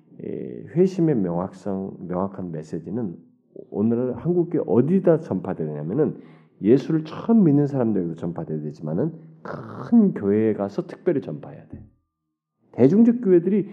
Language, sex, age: Korean, male, 40-59